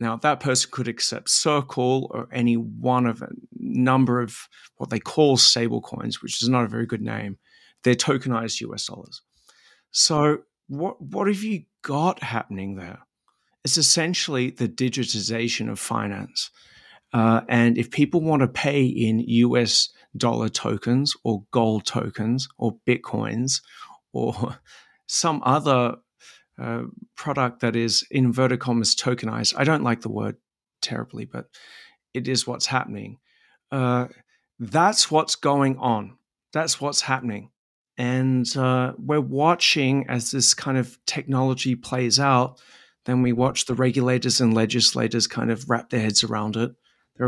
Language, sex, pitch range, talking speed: English, male, 115-135 Hz, 145 wpm